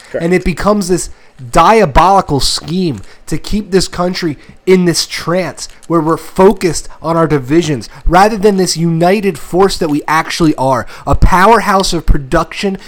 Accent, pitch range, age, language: American, 165-210 Hz, 30-49, English